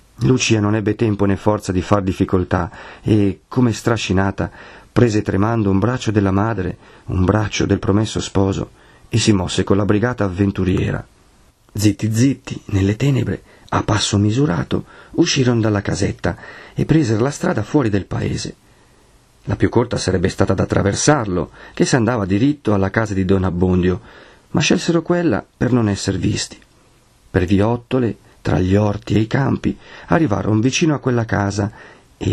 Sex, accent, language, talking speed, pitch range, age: male, native, Italian, 155 wpm, 100-125 Hz, 40-59